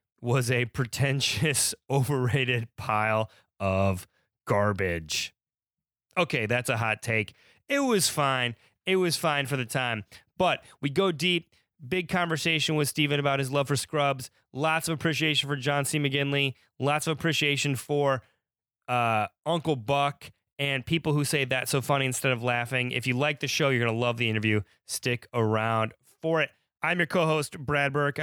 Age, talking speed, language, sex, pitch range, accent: 30-49, 170 wpm, English, male, 120-150 Hz, American